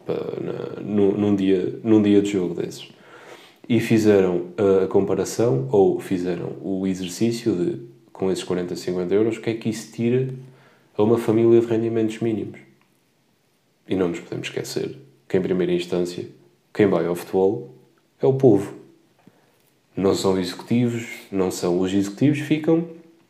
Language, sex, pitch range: Portuguese, male, 95-120 Hz